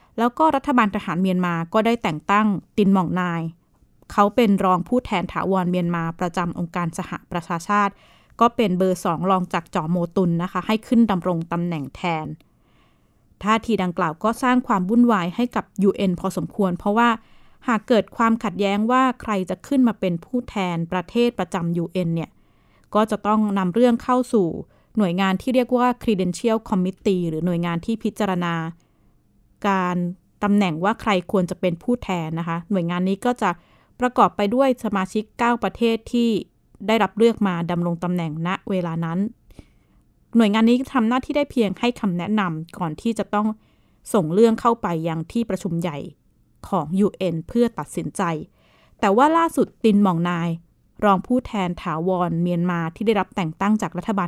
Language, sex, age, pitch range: Thai, female, 20-39, 175-225 Hz